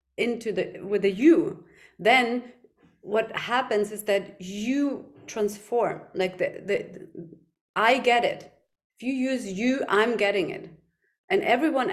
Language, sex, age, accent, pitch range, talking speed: English, female, 30-49, German, 200-250 Hz, 140 wpm